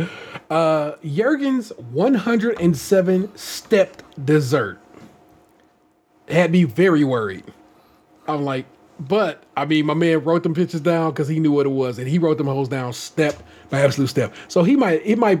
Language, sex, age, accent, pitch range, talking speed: English, male, 30-49, American, 130-170 Hz, 160 wpm